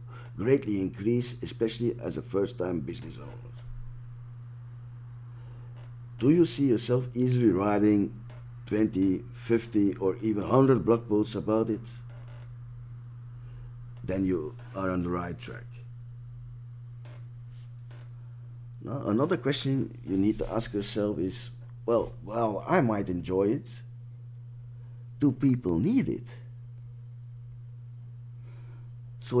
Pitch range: 115-120 Hz